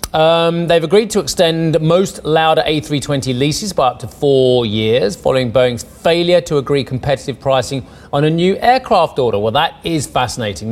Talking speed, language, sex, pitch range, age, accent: 170 wpm, English, male, 125-165 Hz, 30-49, British